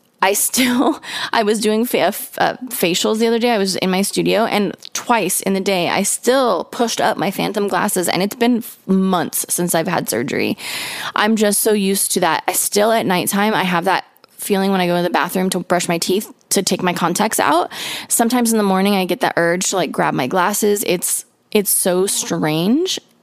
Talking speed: 205 wpm